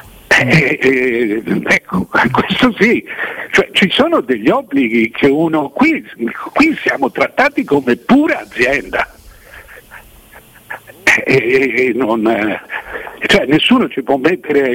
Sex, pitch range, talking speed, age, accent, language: male, 160-255 Hz, 115 wpm, 60-79, native, Italian